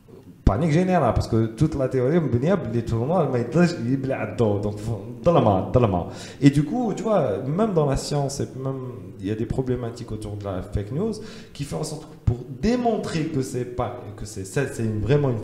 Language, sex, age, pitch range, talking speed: French, male, 30-49, 110-155 Hz, 200 wpm